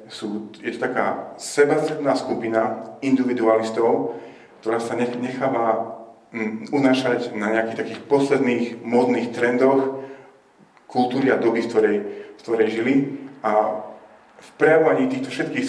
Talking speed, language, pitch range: 115 wpm, Slovak, 105-130 Hz